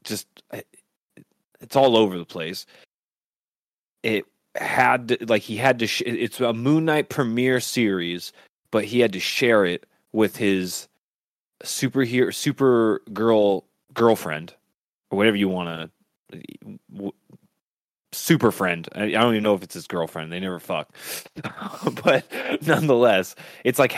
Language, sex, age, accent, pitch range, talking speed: English, male, 20-39, American, 95-125 Hz, 130 wpm